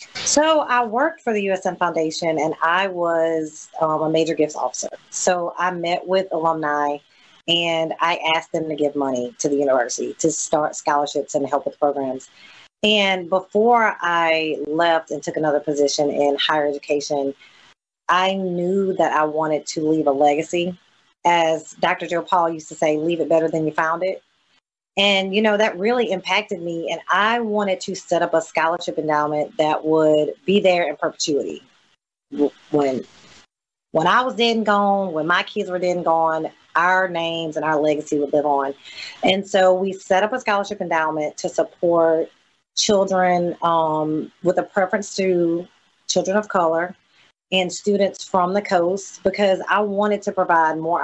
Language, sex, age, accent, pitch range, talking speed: English, female, 30-49, American, 155-190 Hz, 170 wpm